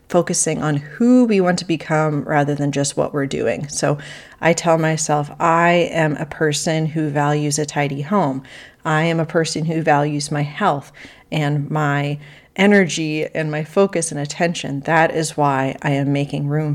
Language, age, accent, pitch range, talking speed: English, 30-49, American, 150-185 Hz, 175 wpm